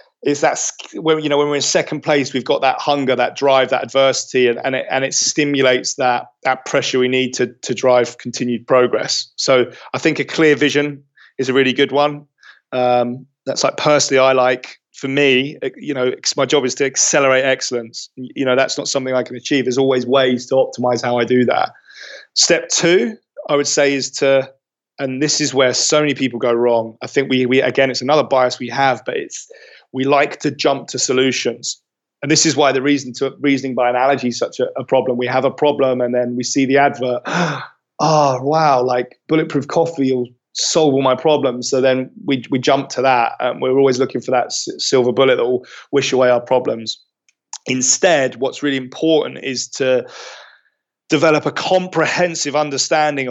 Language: English